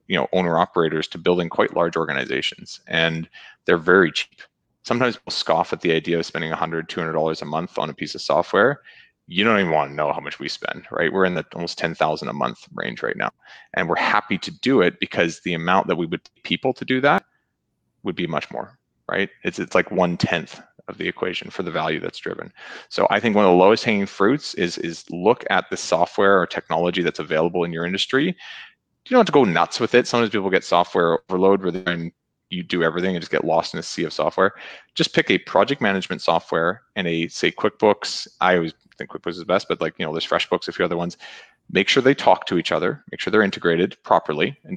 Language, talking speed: English, 235 wpm